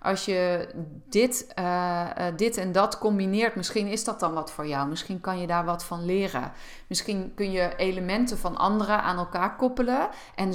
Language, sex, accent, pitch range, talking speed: Dutch, female, Dutch, 175-215 Hz, 180 wpm